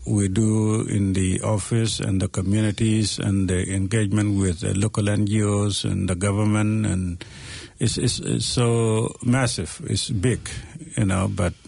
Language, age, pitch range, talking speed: English, 50-69, 95-110 Hz, 150 wpm